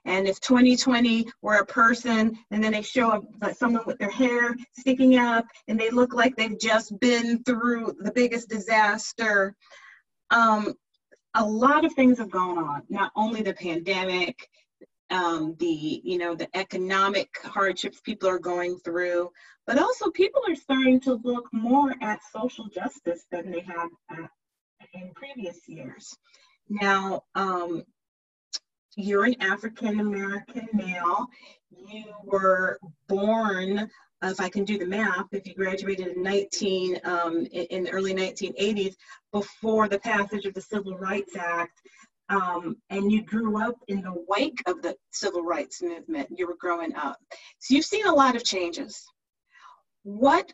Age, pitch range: 30-49, 185-240 Hz